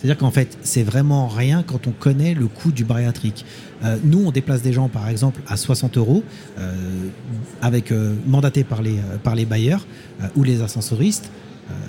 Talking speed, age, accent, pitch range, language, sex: 185 wpm, 40-59, French, 115-140 Hz, French, male